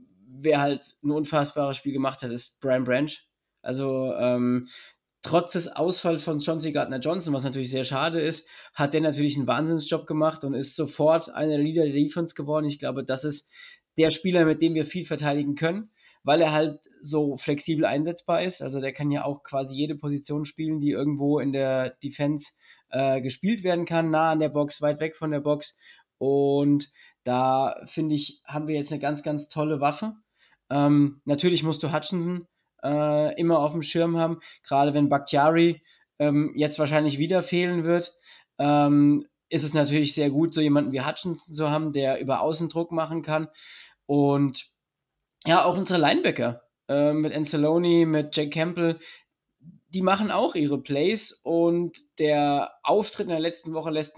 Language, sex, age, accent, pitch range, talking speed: German, male, 20-39, German, 145-165 Hz, 175 wpm